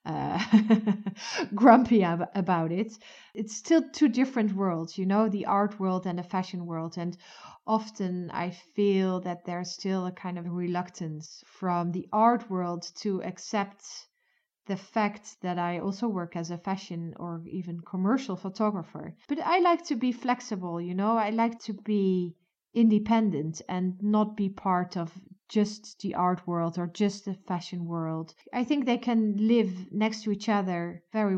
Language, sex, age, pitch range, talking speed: English, female, 30-49, 180-220 Hz, 165 wpm